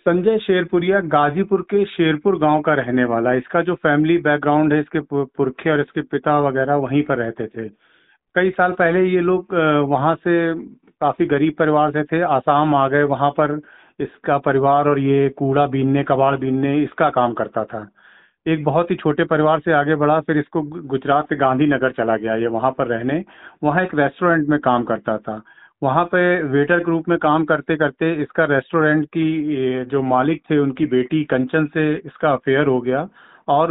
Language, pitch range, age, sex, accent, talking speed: Hindi, 135-165 Hz, 40-59, male, native, 180 wpm